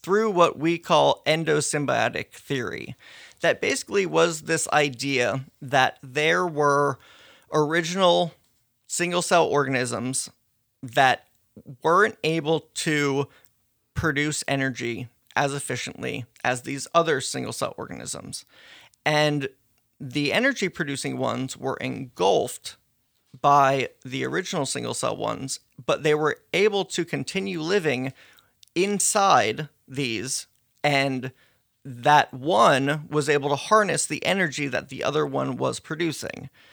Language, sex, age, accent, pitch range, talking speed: English, male, 30-49, American, 130-160 Hz, 105 wpm